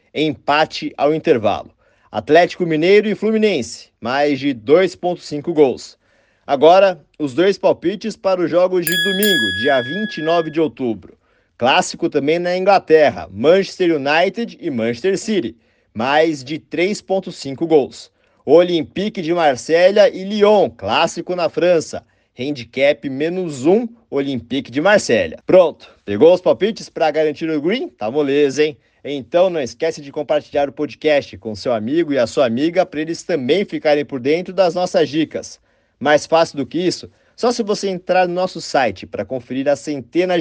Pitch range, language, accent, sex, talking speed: 140-185 Hz, Portuguese, Brazilian, male, 150 wpm